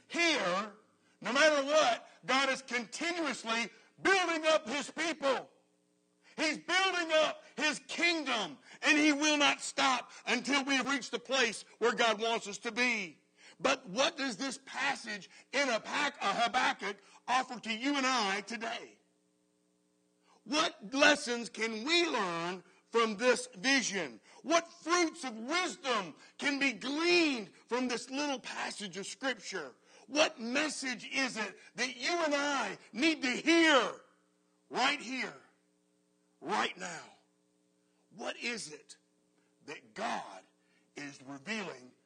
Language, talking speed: English, 130 wpm